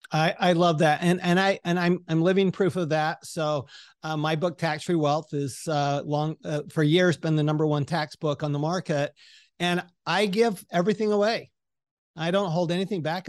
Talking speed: 210 wpm